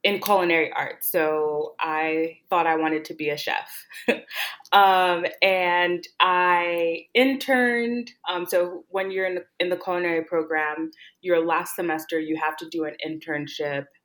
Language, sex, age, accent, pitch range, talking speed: Spanish, female, 20-39, American, 155-190 Hz, 145 wpm